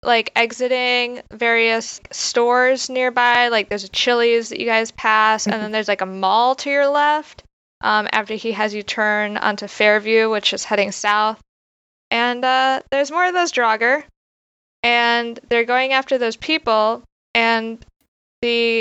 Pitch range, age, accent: 200-240 Hz, 10-29, American